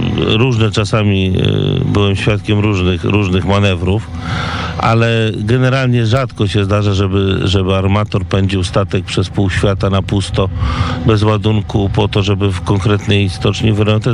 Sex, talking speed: male, 130 wpm